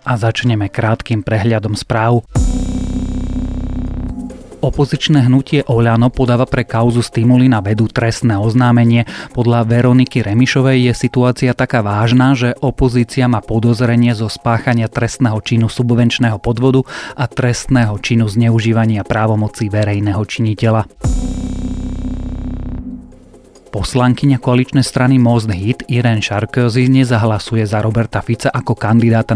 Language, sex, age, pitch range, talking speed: Slovak, male, 30-49, 110-125 Hz, 110 wpm